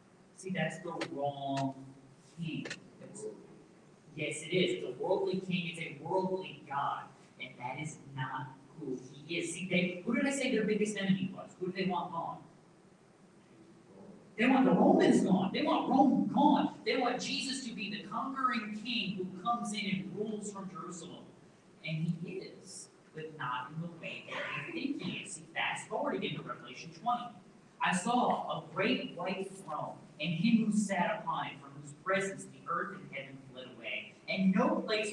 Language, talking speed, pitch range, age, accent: English, 180 wpm, 160-200 Hz, 40-59, American